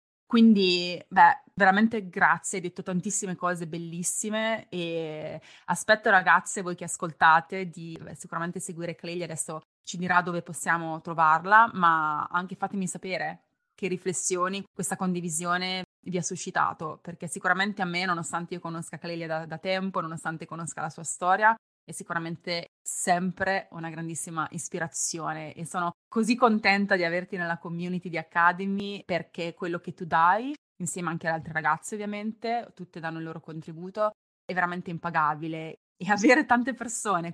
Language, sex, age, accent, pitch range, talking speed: Italian, female, 20-39, native, 165-195 Hz, 150 wpm